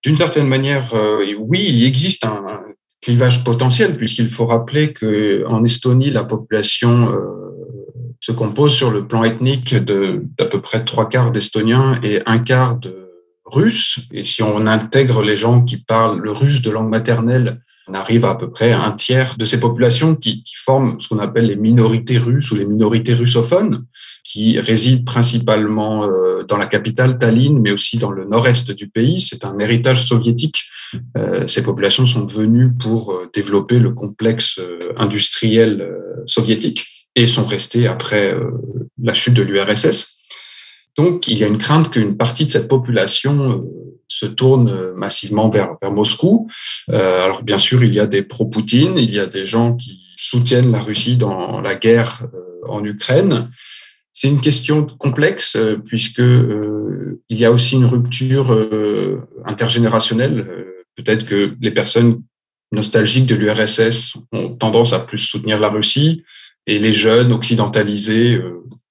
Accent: French